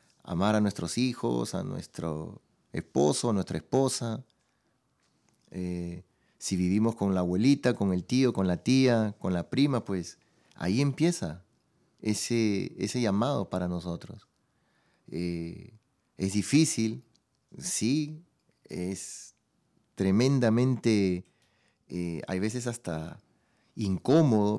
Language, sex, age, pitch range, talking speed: Spanish, male, 30-49, 95-120 Hz, 105 wpm